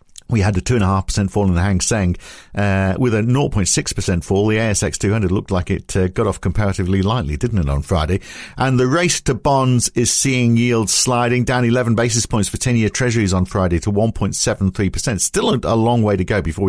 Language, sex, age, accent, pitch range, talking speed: English, male, 50-69, British, 95-125 Hz, 220 wpm